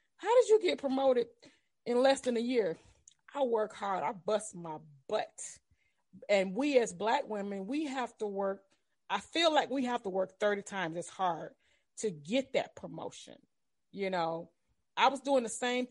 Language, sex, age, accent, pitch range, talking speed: English, female, 30-49, American, 195-260 Hz, 180 wpm